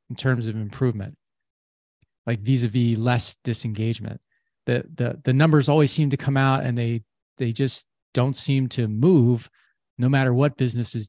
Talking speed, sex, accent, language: 155 wpm, male, American, English